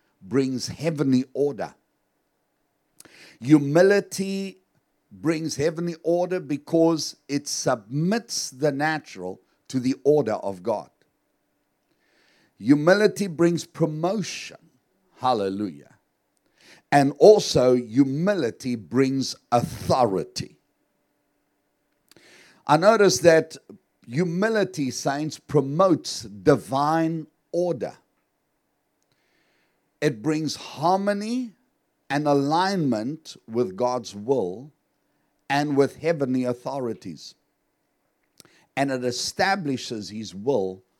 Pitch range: 125-175 Hz